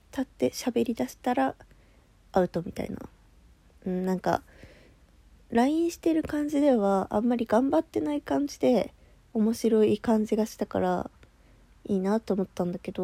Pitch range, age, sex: 180-225 Hz, 20-39, female